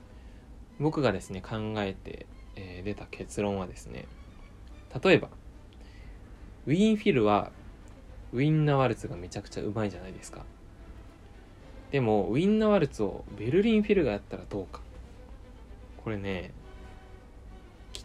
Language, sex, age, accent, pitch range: Japanese, male, 20-39, native, 95-135 Hz